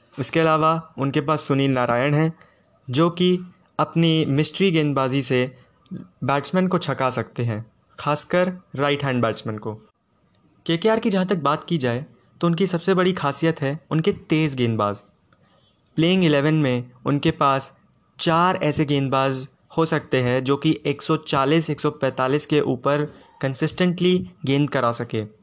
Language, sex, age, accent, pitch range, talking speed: Hindi, male, 20-39, native, 130-165 Hz, 140 wpm